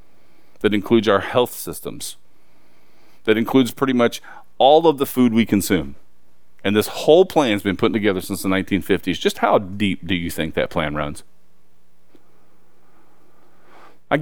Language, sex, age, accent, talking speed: English, male, 40-59, American, 150 wpm